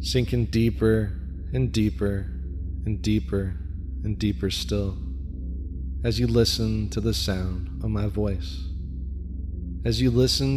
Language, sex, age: English, male, 20-39